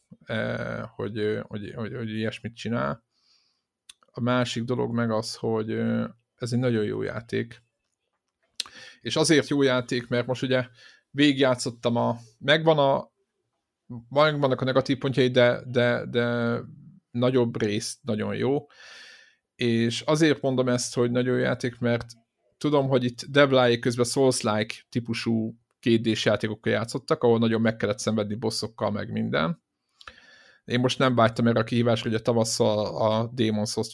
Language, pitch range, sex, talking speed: Hungarian, 110-130 Hz, male, 140 wpm